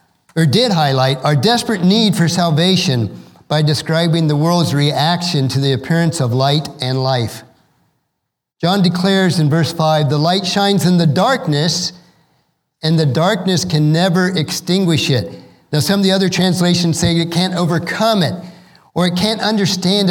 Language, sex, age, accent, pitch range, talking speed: English, male, 50-69, American, 155-185 Hz, 160 wpm